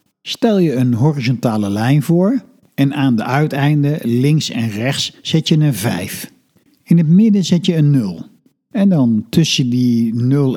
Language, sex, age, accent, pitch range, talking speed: Dutch, male, 60-79, Dutch, 115-155 Hz, 165 wpm